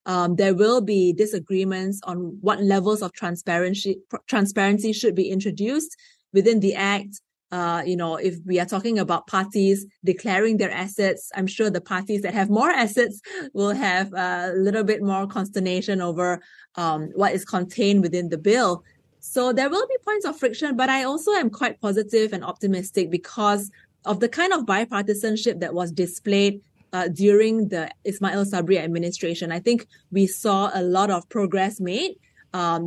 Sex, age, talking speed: female, 20-39, 170 wpm